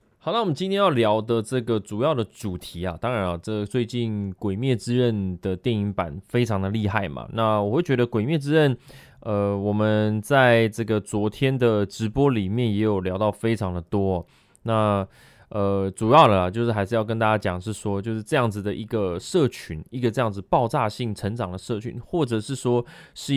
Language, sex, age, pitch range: Chinese, male, 20-39, 95-120 Hz